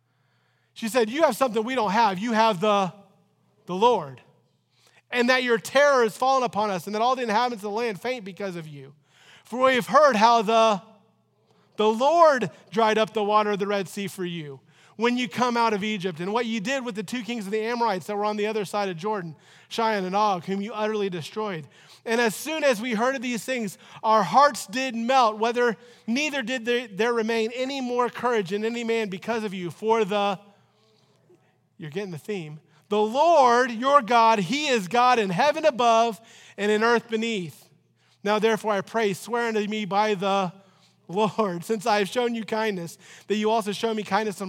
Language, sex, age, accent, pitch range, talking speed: English, male, 30-49, American, 185-230 Hz, 210 wpm